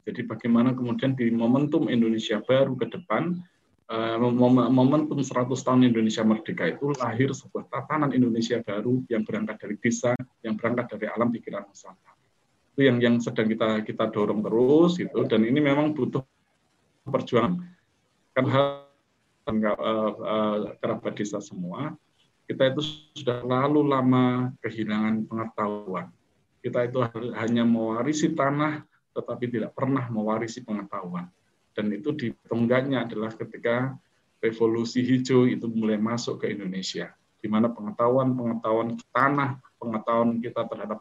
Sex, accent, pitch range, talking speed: male, native, 110-135 Hz, 120 wpm